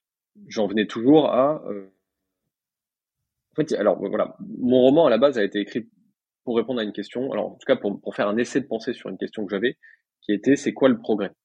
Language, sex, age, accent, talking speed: French, male, 20-39, French, 225 wpm